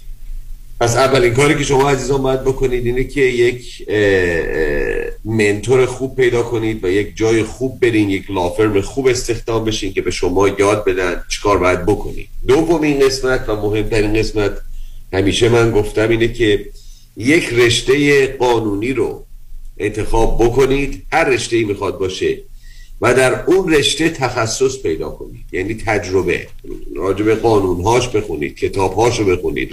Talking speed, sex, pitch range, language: 140 wpm, male, 110-150 Hz, Persian